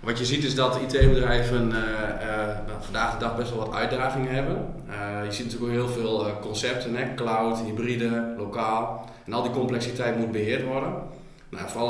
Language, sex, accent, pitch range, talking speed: Dutch, male, Dutch, 105-120 Hz, 185 wpm